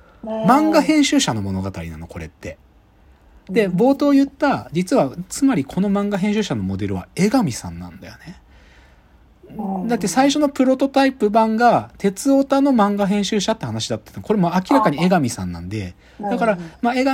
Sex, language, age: male, Japanese, 40-59